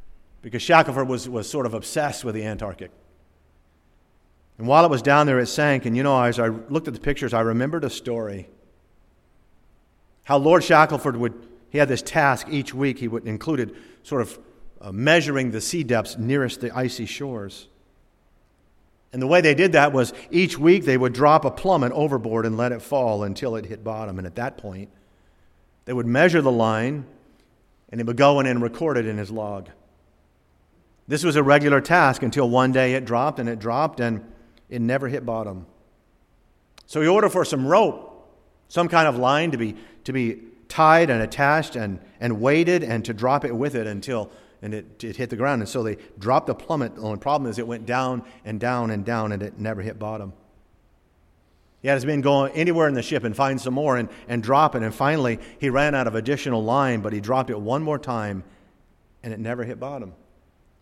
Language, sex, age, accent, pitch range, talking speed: English, male, 50-69, American, 105-140 Hz, 205 wpm